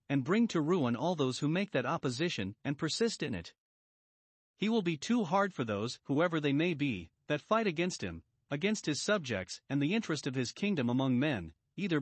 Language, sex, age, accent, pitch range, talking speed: English, male, 40-59, American, 130-180 Hz, 205 wpm